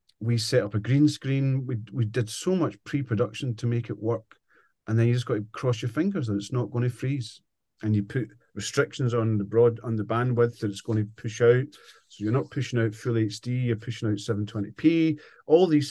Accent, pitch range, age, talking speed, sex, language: British, 110-135 Hz, 40-59, 225 wpm, male, English